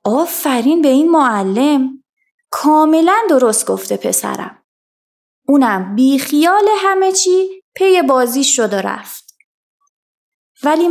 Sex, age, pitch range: female, 30-49, 220-330 Hz